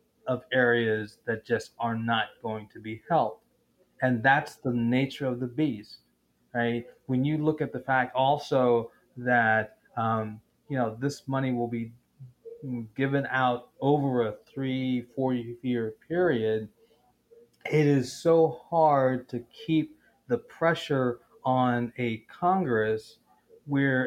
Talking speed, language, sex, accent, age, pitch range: 130 wpm, English, male, American, 30-49, 120-155 Hz